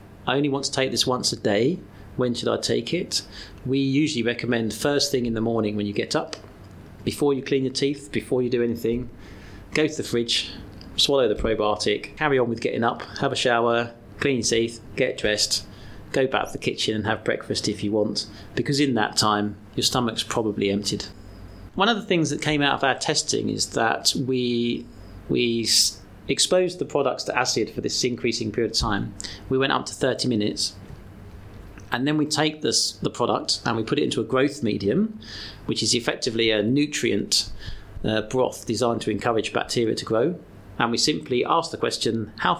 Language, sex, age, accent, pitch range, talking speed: English, male, 30-49, British, 105-135 Hz, 195 wpm